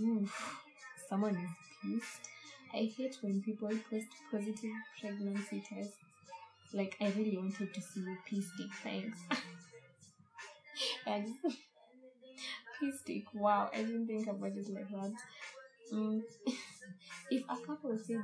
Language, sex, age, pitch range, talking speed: English, female, 10-29, 190-235 Hz, 120 wpm